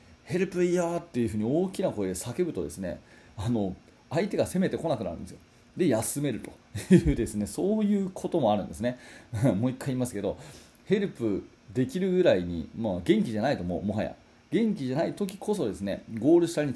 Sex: male